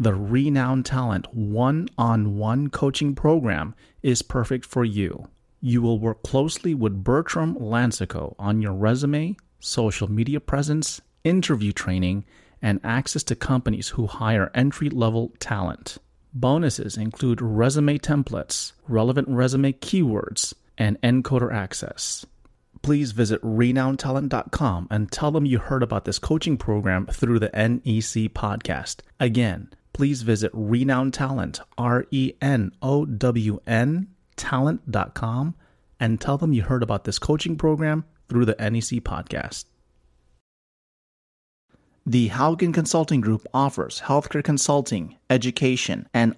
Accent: American